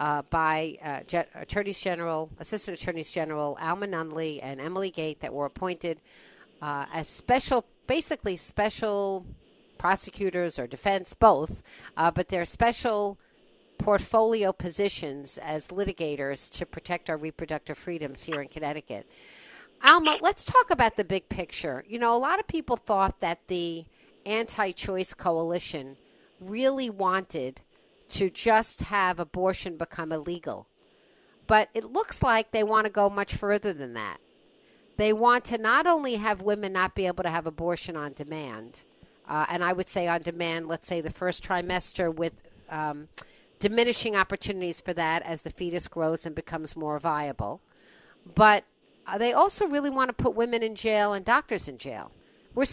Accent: American